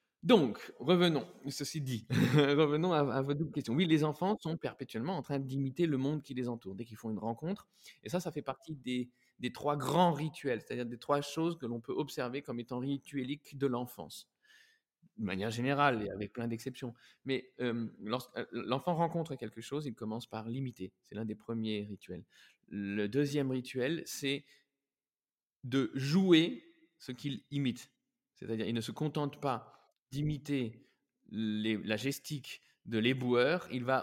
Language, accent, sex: French, French, male